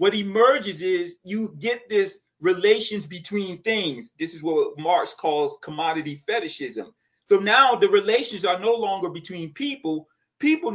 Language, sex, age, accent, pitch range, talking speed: English, male, 30-49, American, 170-240 Hz, 145 wpm